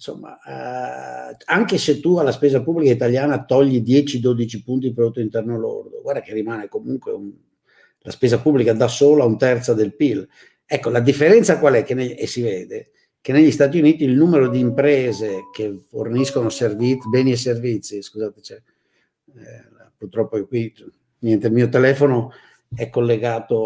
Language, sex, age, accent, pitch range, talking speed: Italian, male, 50-69, native, 110-145 Hz, 165 wpm